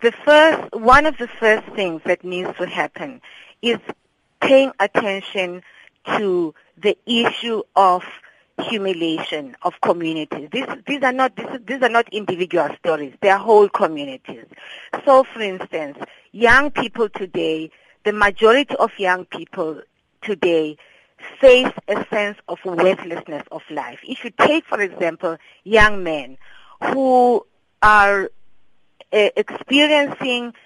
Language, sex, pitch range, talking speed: English, female, 180-240 Hz, 120 wpm